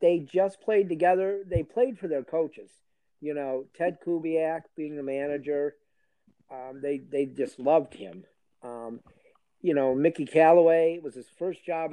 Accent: American